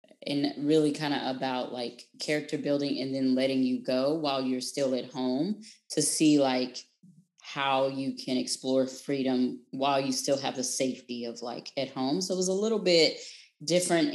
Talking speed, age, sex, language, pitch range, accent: 180 wpm, 10-29, female, English, 130-155 Hz, American